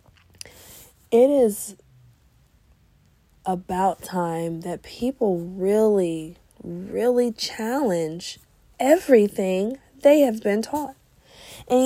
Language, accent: English, American